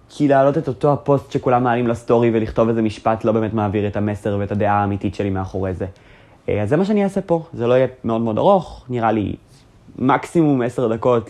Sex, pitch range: male, 105-130 Hz